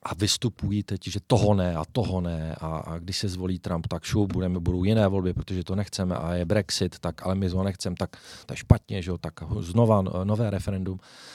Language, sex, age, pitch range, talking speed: Czech, male, 40-59, 90-115 Hz, 215 wpm